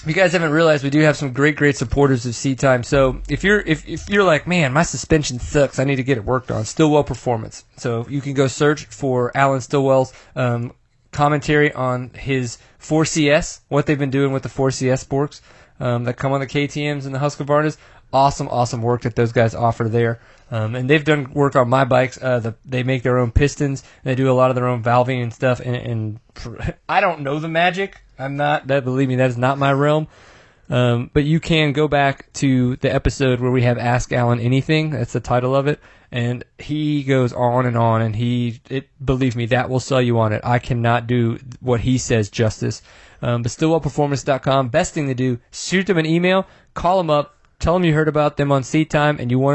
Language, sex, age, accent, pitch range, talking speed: English, male, 20-39, American, 125-145 Hz, 230 wpm